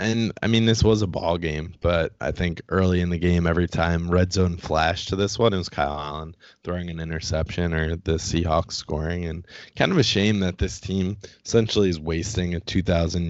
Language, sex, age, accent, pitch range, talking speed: English, male, 20-39, American, 85-100 Hz, 210 wpm